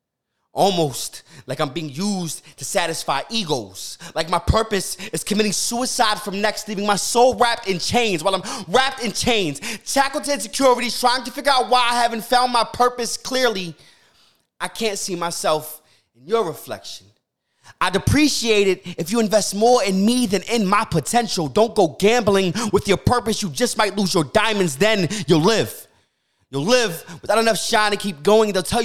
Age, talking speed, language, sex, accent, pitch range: 20-39, 180 wpm, English, male, American, 145-215 Hz